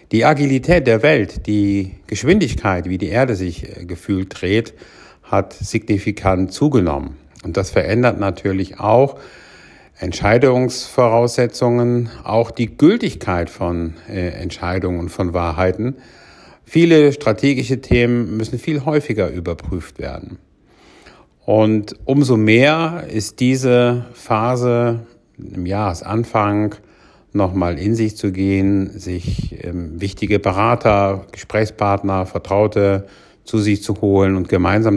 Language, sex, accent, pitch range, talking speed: German, male, German, 95-120 Hz, 105 wpm